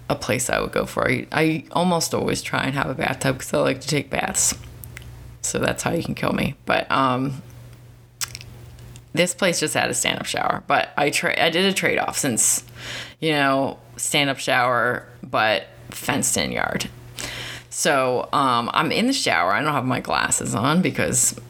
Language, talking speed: English, 185 wpm